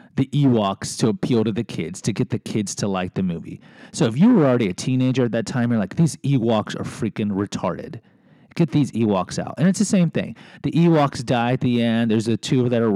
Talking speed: 245 wpm